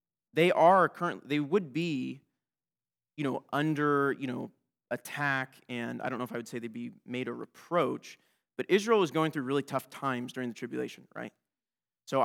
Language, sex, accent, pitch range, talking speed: English, male, American, 130-175 Hz, 185 wpm